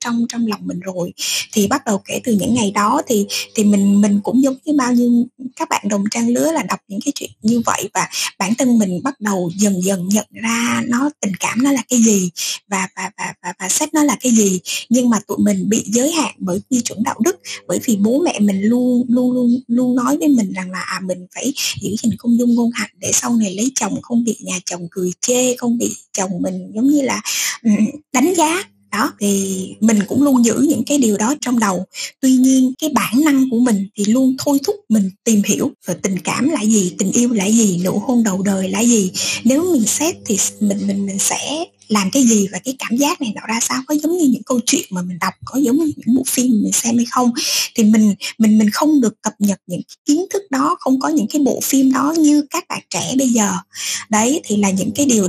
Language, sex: Vietnamese, female